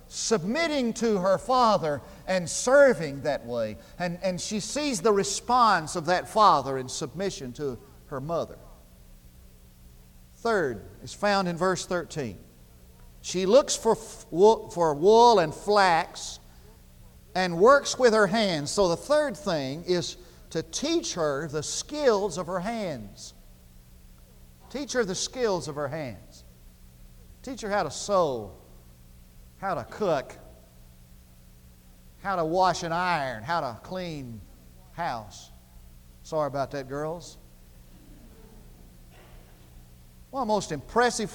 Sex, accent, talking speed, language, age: male, American, 130 wpm, English, 50-69